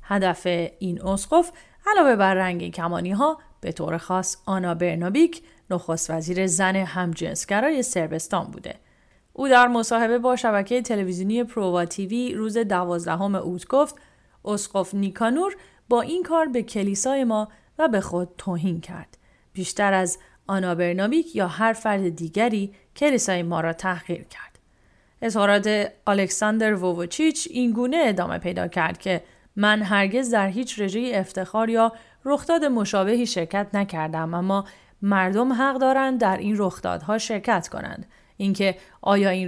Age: 30-49